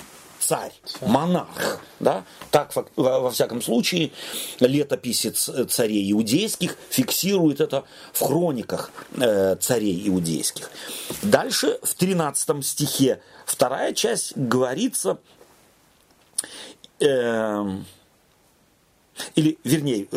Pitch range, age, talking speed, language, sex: 110-175 Hz, 40-59, 85 wpm, Russian, male